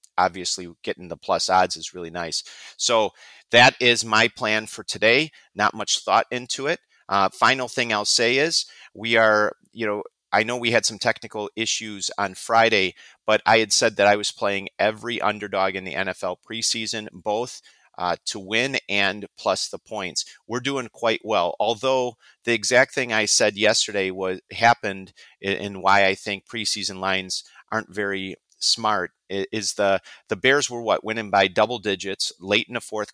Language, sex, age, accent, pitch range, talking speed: English, male, 40-59, American, 95-115 Hz, 175 wpm